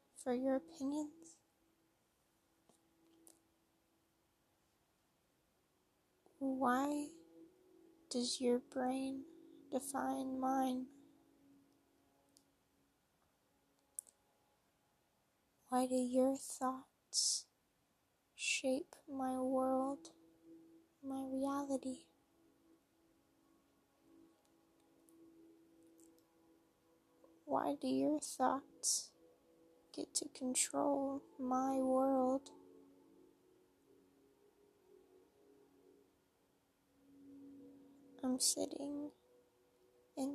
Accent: American